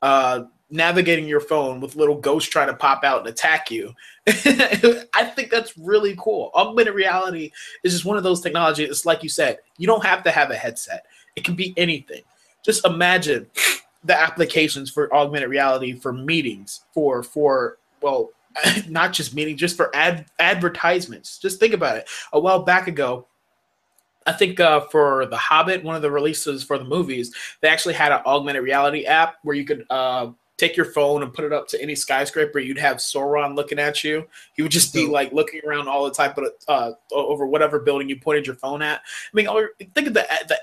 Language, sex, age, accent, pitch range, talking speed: English, male, 20-39, American, 145-190 Hz, 200 wpm